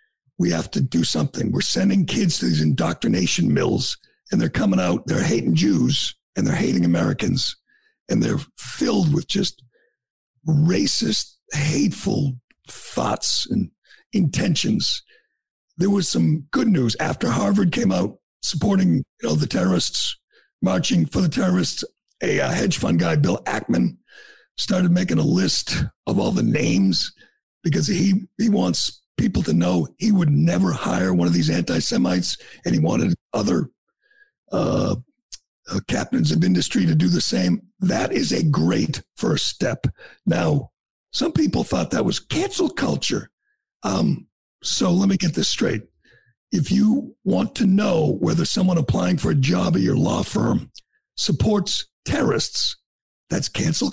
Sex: male